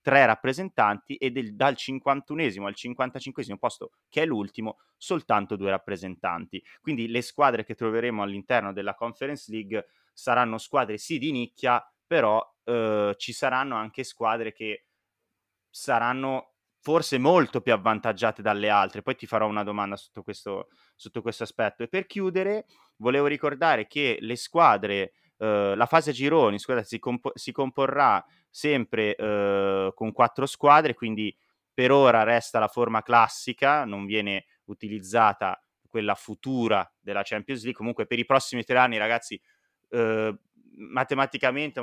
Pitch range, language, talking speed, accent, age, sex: 105-135 Hz, Italian, 140 wpm, native, 30-49, male